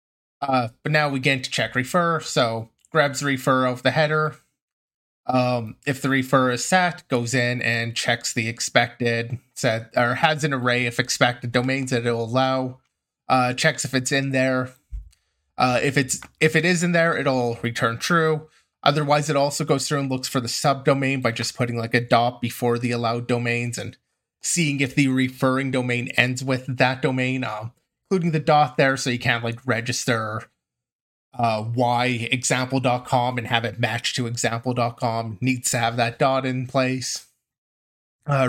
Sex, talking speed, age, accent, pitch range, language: male, 175 wpm, 20-39, American, 120-150 Hz, English